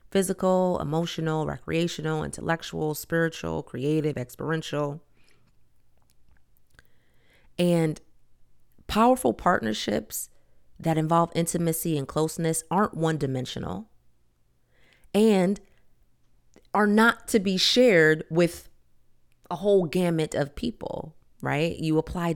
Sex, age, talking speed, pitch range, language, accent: female, 30-49, 90 wpm, 125-170 Hz, English, American